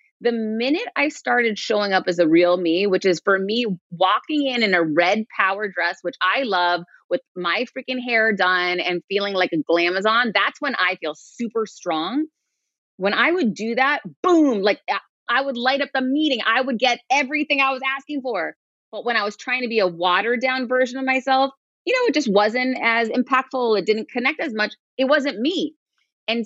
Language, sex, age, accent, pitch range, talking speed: English, female, 30-49, American, 180-265 Hz, 205 wpm